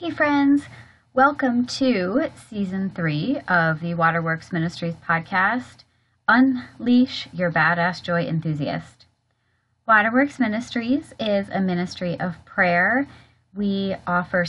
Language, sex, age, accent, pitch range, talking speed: English, female, 30-49, American, 160-220 Hz, 105 wpm